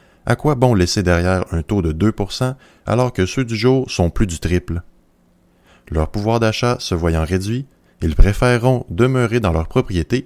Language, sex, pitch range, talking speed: French, male, 90-125 Hz, 175 wpm